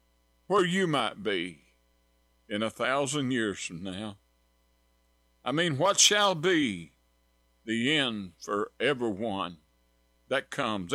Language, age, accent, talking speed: English, 50-69, American, 115 wpm